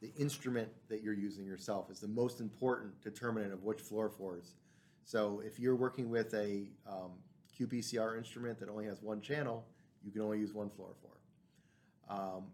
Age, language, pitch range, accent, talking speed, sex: 40-59, English, 100-120 Hz, American, 165 wpm, male